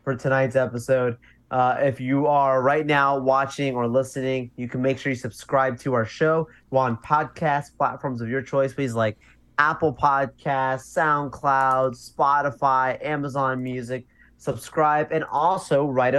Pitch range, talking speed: 120-140 Hz, 145 wpm